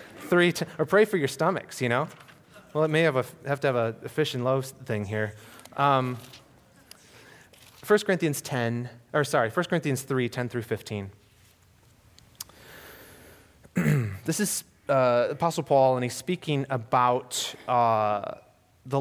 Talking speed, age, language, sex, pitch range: 125 wpm, 30-49, English, male, 120-165 Hz